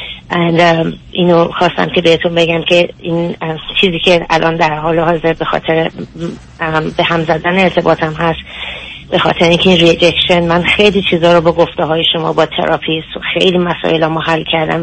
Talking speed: 180 wpm